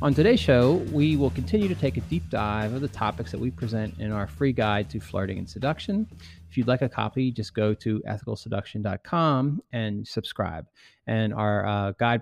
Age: 30-49